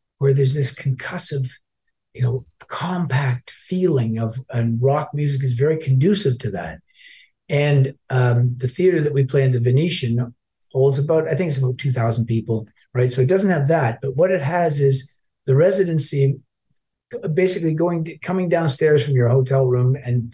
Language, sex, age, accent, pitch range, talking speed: English, male, 50-69, American, 120-140 Hz, 170 wpm